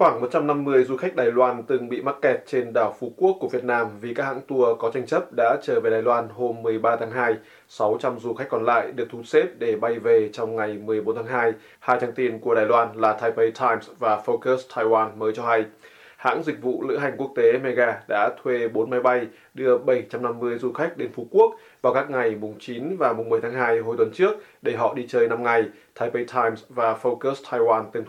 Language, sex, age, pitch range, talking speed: Vietnamese, male, 20-39, 115-155 Hz, 230 wpm